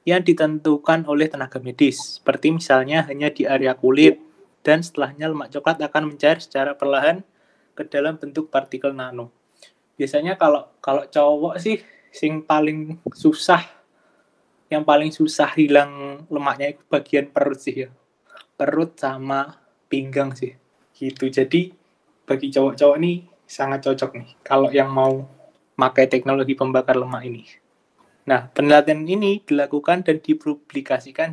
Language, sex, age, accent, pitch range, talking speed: Indonesian, male, 20-39, native, 135-165 Hz, 130 wpm